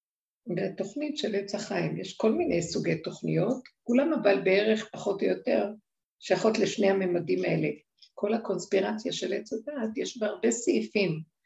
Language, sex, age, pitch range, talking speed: Hebrew, female, 60-79, 175-220 Hz, 145 wpm